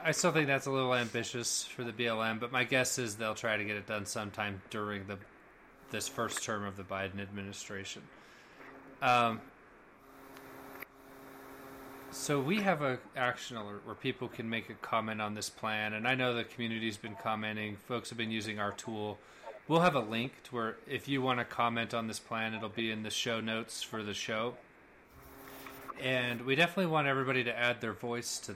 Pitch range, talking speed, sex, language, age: 110-130 Hz, 195 wpm, male, English, 30-49